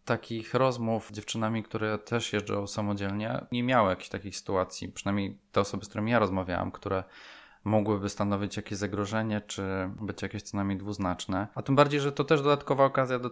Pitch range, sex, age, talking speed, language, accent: 105-130 Hz, male, 20-39, 180 wpm, Polish, native